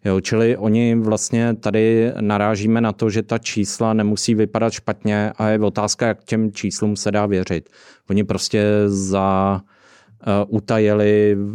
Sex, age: male, 30-49